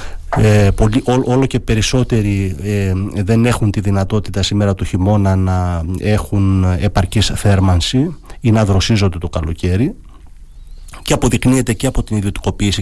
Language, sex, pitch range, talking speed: Greek, male, 90-115 Hz, 135 wpm